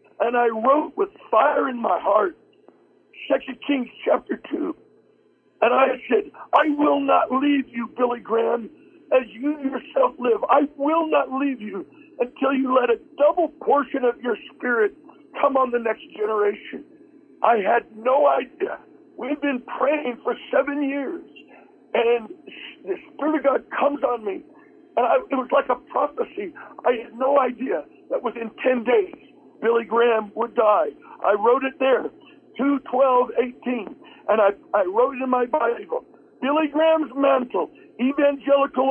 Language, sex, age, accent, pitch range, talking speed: English, male, 50-69, American, 240-320 Hz, 155 wpm